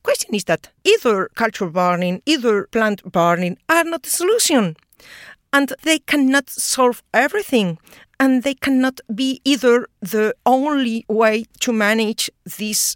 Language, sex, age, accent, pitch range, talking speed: English, female, 40-59, Spanish, 195-255 Hz, 140 wpm